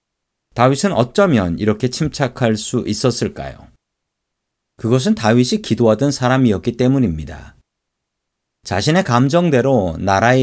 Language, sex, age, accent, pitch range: Korean, male, 40-59, native, 110-145 Hz